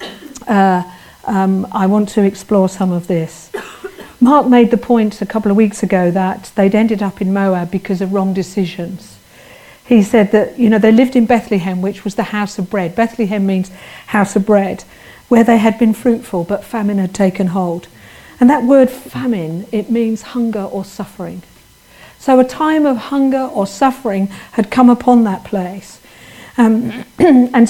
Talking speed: 175 wpm